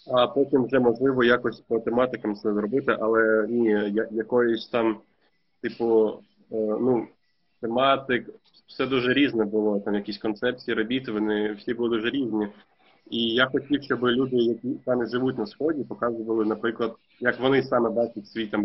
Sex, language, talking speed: male, Ukrainian, 155 wpm